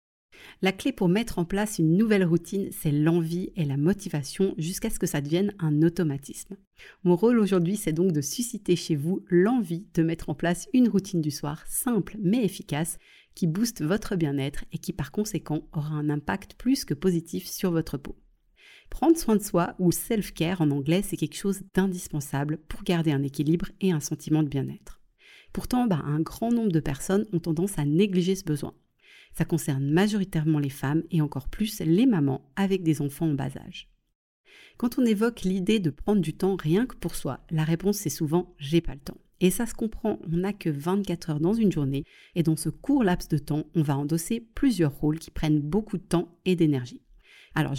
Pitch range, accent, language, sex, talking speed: 155-200 Hz, French, French, female, 205 wpm